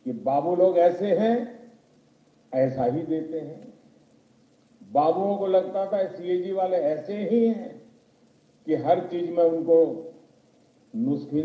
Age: 50-69